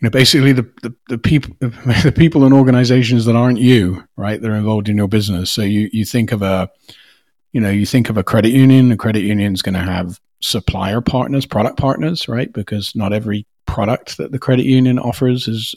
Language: English